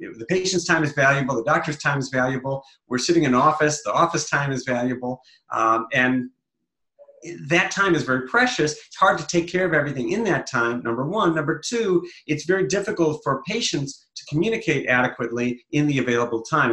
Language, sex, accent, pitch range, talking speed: English, male, American, 120-165 Hz, 190 wpm